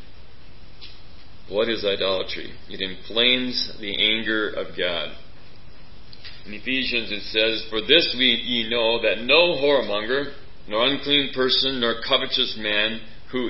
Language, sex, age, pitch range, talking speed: English, male, 40-59, 105-125 Hz, 120 wpm